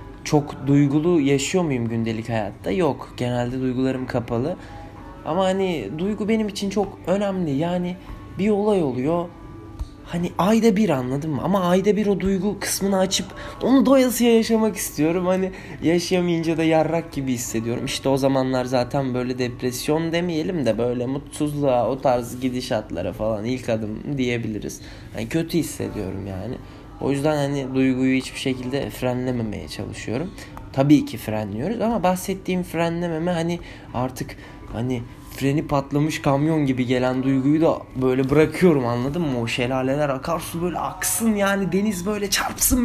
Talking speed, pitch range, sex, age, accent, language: 140 wpm, 120-180 Hz, male, 20-39, native, Turkish